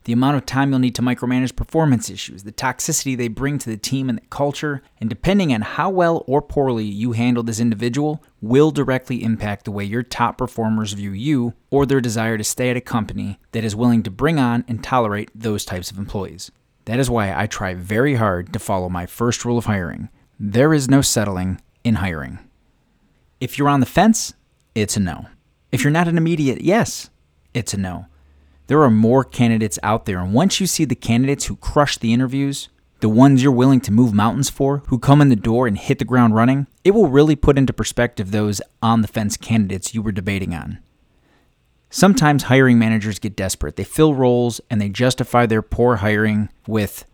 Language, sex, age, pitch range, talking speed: English, male, 30-49, 110-135 Hz, 205 wpm